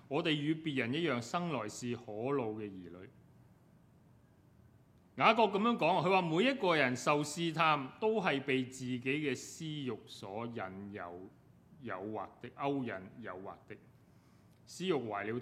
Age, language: 30-49, Chinese